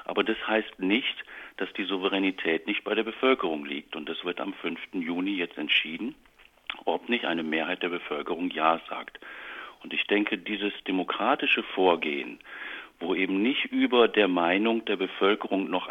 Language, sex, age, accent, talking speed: German, male, 50-69, German, 160 wpm